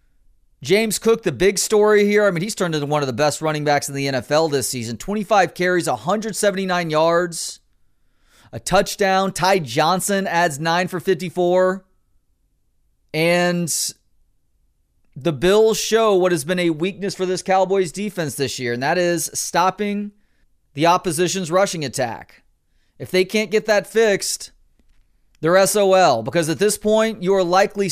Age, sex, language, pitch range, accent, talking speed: 30-49, male, English, 150-195 Hz, American, 155 wpm